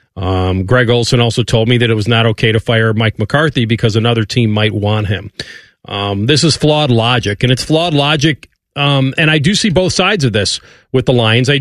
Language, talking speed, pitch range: English, 220 wpm, 115-155 Hz